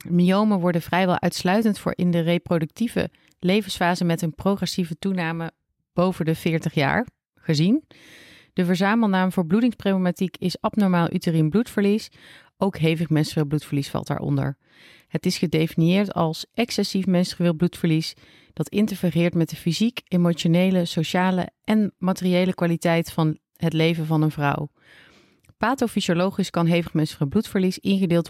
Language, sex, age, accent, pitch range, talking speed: Dutch, female, 30-49, Dutch, 160-195 Hz, 130 wpm